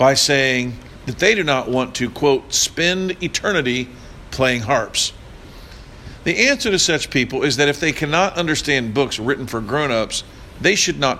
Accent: American